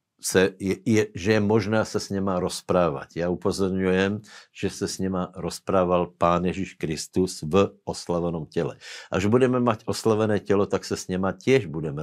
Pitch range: 90-105 Hz